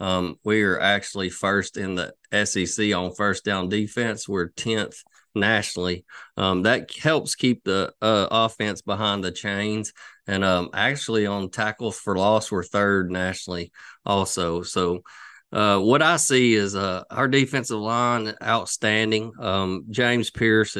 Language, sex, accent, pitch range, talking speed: English, male, American, 95-110 Hz, 145 wpm